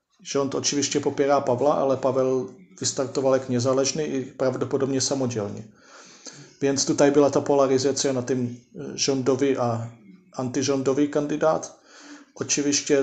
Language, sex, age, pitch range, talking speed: Polish, male, 40-59, 120-140 Hz, 105 wpm